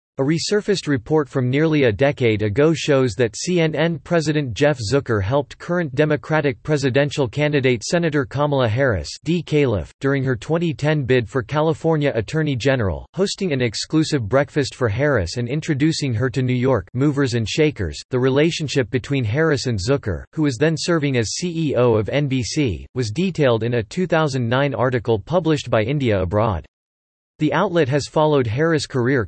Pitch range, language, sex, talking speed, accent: 120-155 Hz, English, male, 160 wpm, American